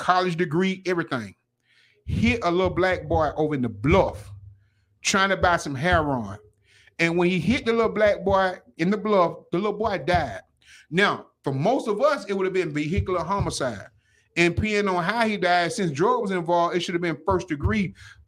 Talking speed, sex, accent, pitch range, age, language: 195 wpm, male, American, 135-195 Hz, 30-49, English